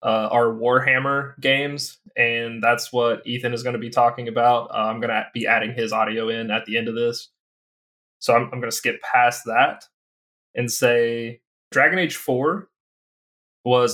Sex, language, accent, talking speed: male, English, American, 180 wpm